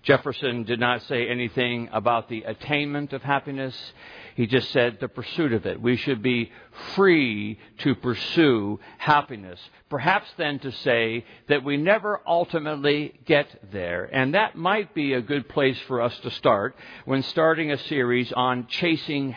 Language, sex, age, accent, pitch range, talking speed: English, male, 60-79, American, 130-160 Hz, 160 wpm